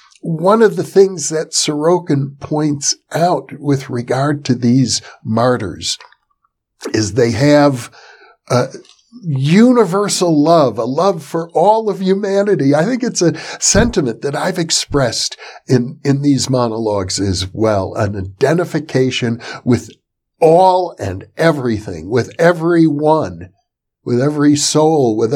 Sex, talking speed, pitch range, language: male, 120 wpm, 125-170 Hz, English